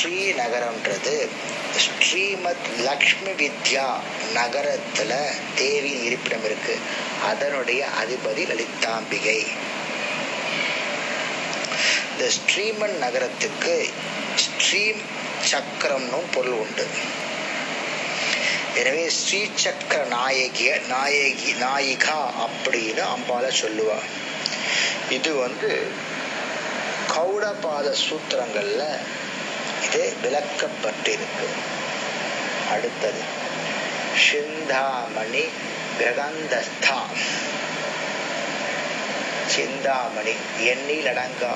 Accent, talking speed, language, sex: native, 45 wpm, Tamil, male